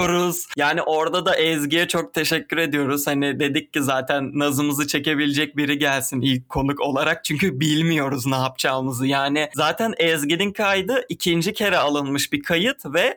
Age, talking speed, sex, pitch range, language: 30-49, 145 wpm, male, 140-175 Hz, Turkish